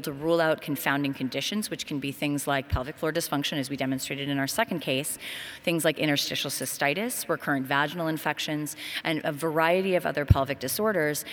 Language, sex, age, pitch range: English, female, 30-49, 140-180 Hz